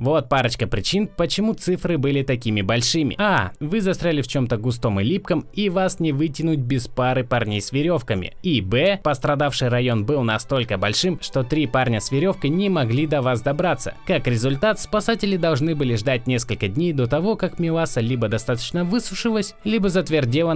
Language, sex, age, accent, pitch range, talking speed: Russian, male, 20-39, native, 125-170 Hz, 170 wpm